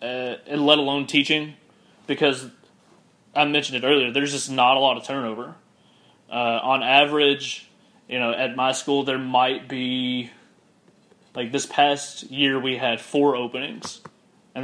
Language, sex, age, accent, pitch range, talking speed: English, male, 20-39, American, 125-150 Hz, 150 wpm